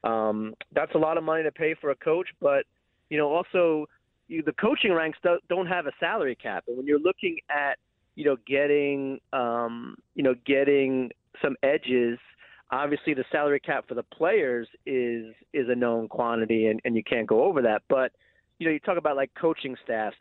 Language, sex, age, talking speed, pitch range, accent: English, male, 30-49, 200 wpm, 115-155 Hz, American